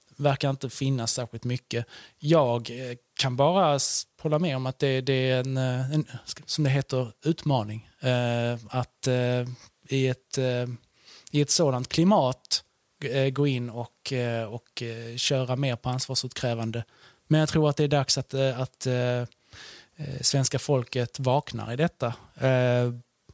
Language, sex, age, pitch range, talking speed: English, male, 20-39, 125-150 Hz, 125 wpm